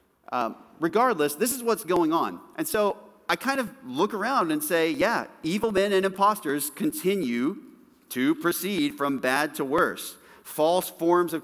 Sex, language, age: male, English, 40-59